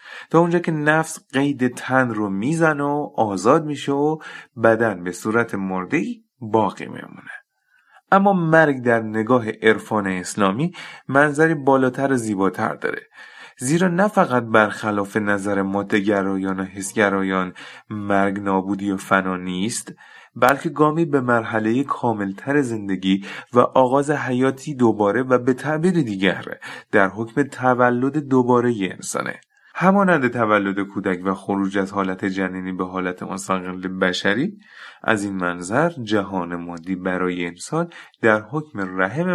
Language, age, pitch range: Persian, 30-49, 95-145 Hz